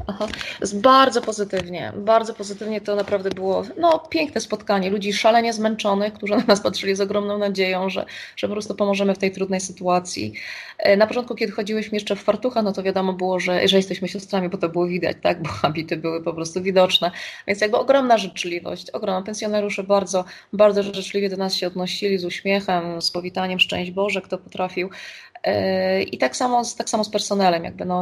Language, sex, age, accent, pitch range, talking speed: Polish, female, 20-39, native, 185-210 Hz, 175 wpm